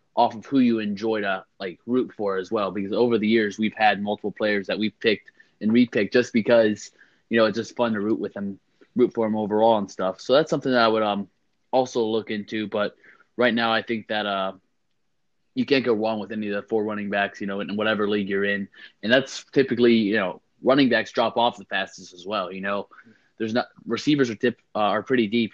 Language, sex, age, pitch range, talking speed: English, male, 20-39, 100-115 Hz, 235 wpm